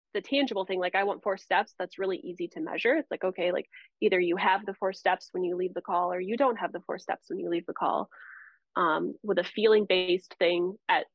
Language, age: English, 20-39